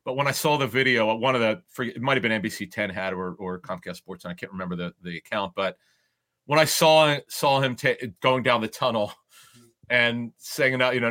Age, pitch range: 40-59, 115-155 Hz